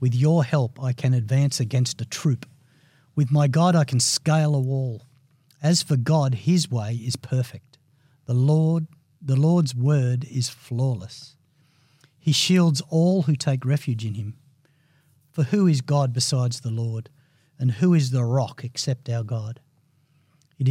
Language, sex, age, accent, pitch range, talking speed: English, male, 50-69, Australian, 125-150 Hz, 160 wpm